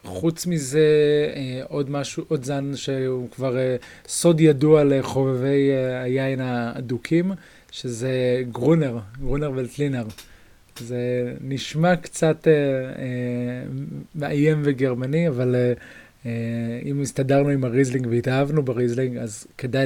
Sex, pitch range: male, 120-140 Hz